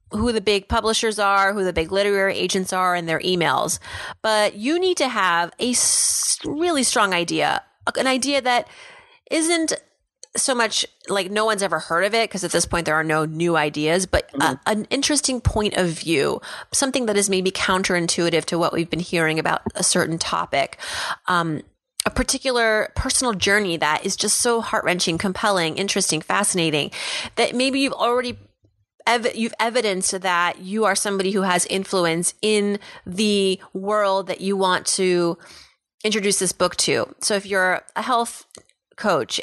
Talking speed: 165 wpm